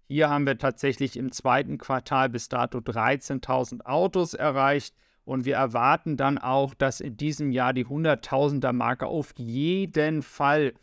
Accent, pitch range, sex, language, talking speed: German, 130-150 Hz, male, German, 155 wpm